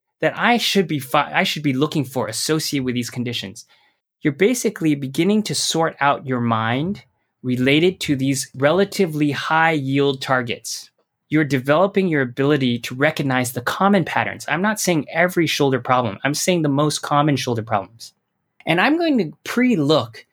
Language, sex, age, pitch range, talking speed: English, male, 20-39, 125-170 Hz, 165 wpm